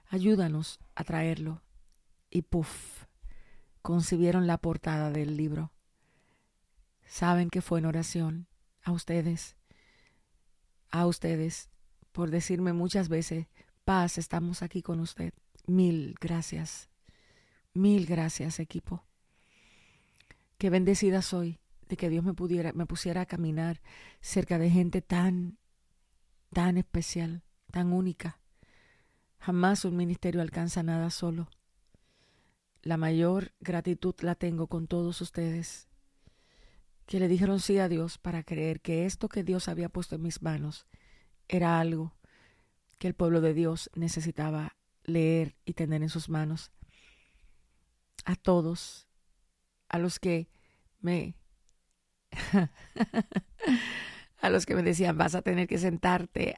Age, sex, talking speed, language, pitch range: 40-59, female, 120 wpm, English, 155-180 Hz